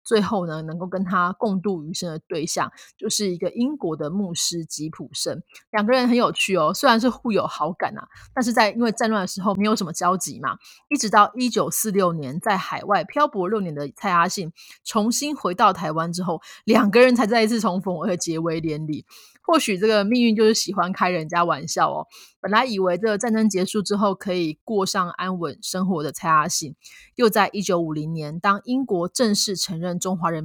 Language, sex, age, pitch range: Chinese, female, 20-39, 170-215 Hz